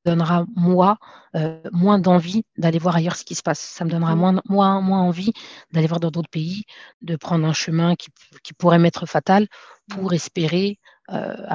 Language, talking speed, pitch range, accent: French, 185 wpm, 165-195 Hz, French